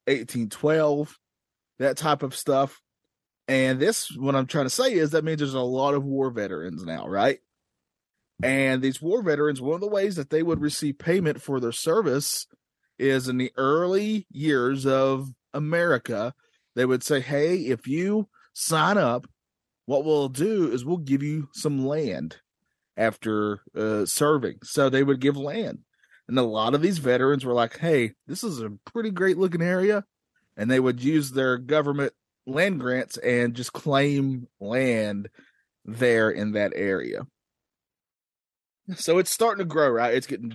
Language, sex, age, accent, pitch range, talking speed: English, male, 30-49, American, 125-155 Hz, 165 wpm